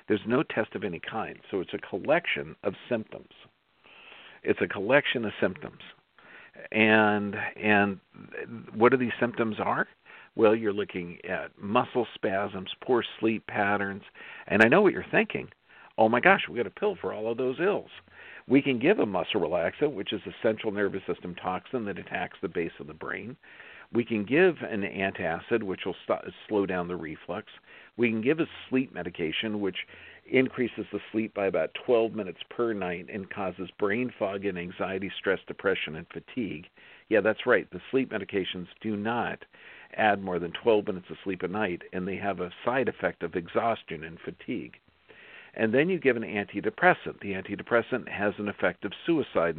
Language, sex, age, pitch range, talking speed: English, male, 50-69, 100-115 Hz, 180 wpm